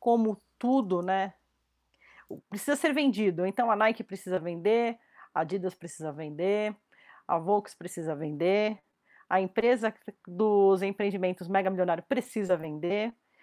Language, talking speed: Portuguese, 120 wpm